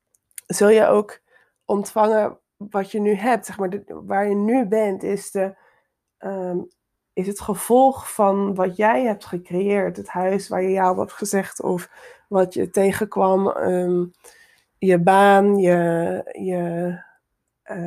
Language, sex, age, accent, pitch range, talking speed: Dutch, female, 20-39, Dutch, 190-220 Hz, 130 wpm